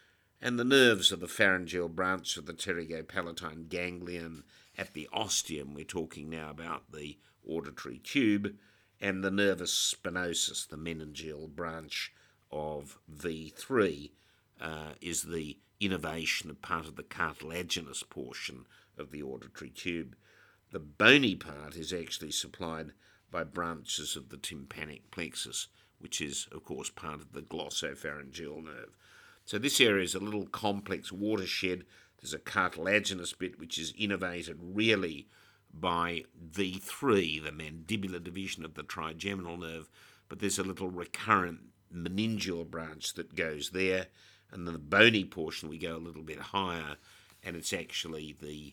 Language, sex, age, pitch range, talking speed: English, male, 50-69, 80-100 Hz, 140 wpm